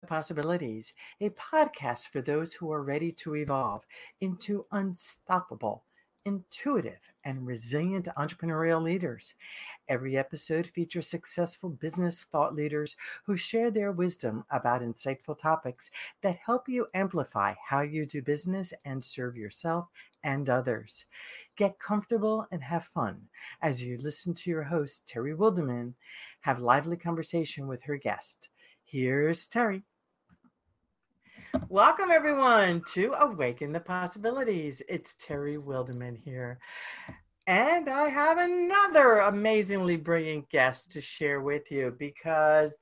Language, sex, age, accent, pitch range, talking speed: English, female, 60-79, American, 145-205 Hz, 120 wpm